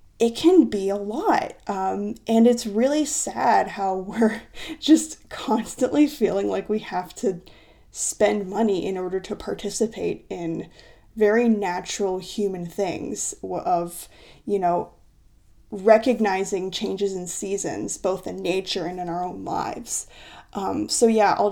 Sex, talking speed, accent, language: female, 135 wpm, American, English